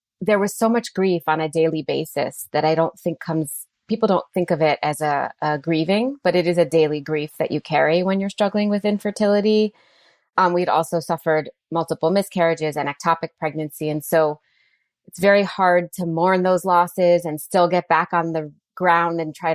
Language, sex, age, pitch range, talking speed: English, female, 20-39, 155-180 Hz, 195 wpm